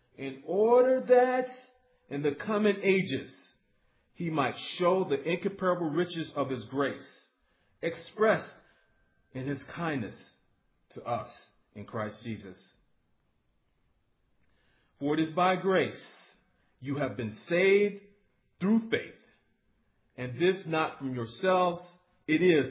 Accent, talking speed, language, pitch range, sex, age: American, 115 wpm, English, 125-190 Hz, male, 40-59